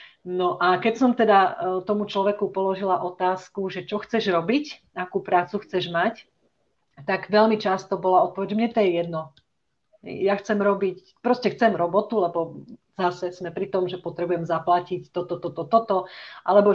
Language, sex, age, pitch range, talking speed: Slovak, female, 40-59, 170-195 Hz, 160 wpm